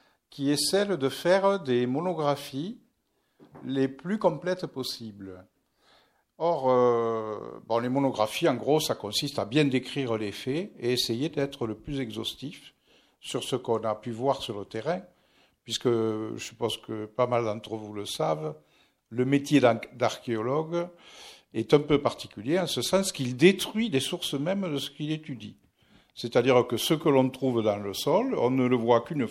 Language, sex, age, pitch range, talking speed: French, male, 50-69, 115-150 Hz, 170 wpm